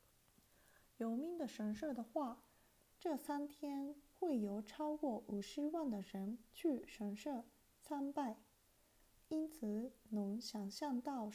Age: 30-49